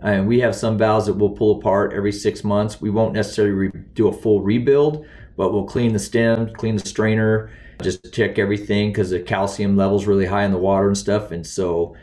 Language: English